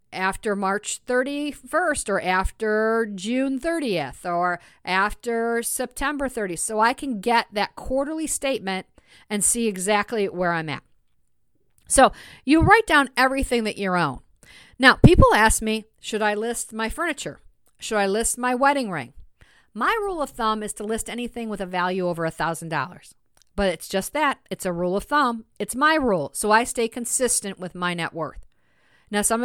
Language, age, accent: English, 50-69, American